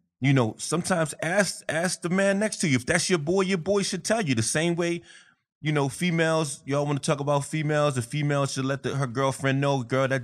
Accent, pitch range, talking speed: American, 120-170 Hz, 240 wpm